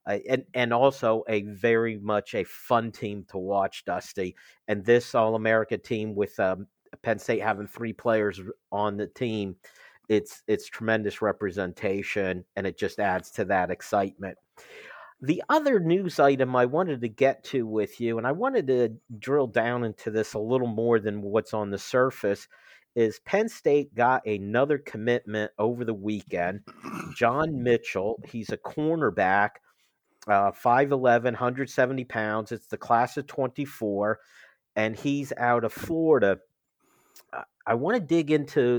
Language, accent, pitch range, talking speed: English, American, 110-145 Hz, 155 wpm